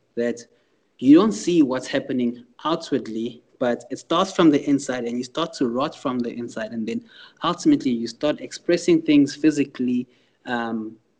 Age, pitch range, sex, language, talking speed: 20-39, 120-145 Hz, male, English, 160 wpm